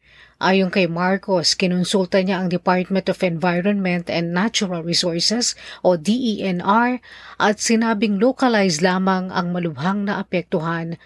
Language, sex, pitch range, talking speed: Filipino, female, 175-215 Hz, 120 wpm